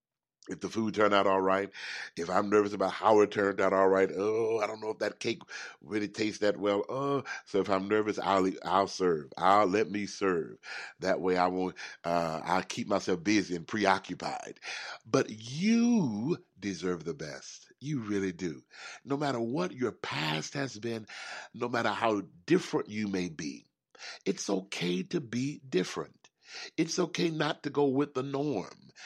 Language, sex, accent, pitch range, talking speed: English, male, American, 95-150 Hz, 180 wpm